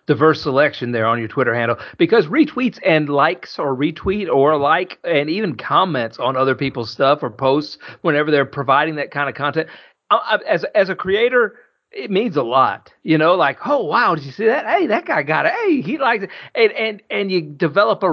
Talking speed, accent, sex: 210 wpm, American, male